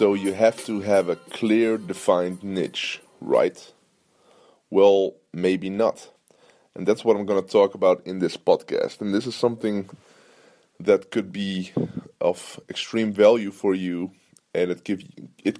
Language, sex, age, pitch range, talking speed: English, male, 20-39, 95-110 Hz, 155 wpm